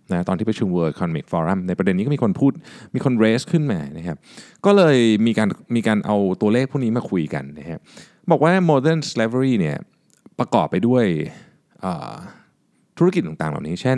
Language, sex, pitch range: Thai, male, 95-155 Hz